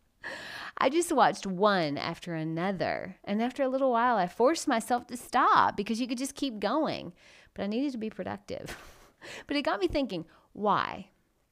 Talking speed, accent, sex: 175 wpm, American, female